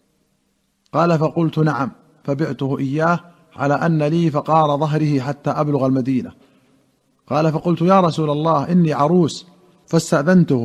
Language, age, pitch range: Arabic, 40-59, 145-165 Hz